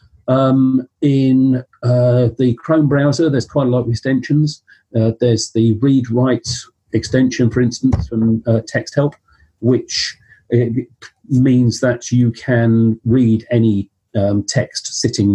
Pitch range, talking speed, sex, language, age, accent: 110-135 Hz, 135 wpm, male, English, 40-59, British